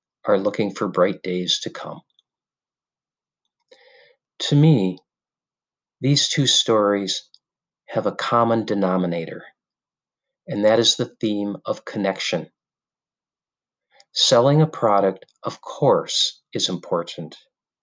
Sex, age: male, 40-59